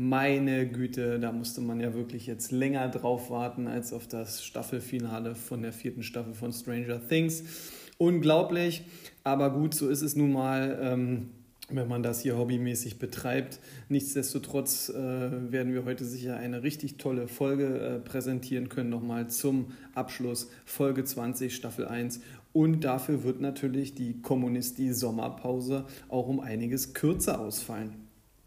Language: German